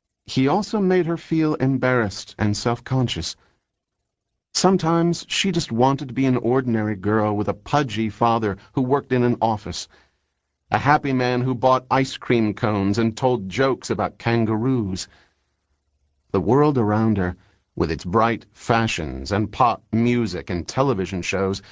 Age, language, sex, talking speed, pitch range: 50-69, English, male, 145 wpm, 90-120 Hz